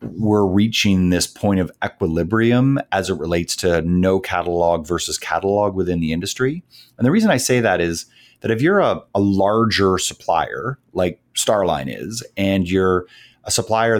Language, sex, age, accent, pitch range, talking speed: English, male, 30-49, American, 85-105 Hz, 165 wpm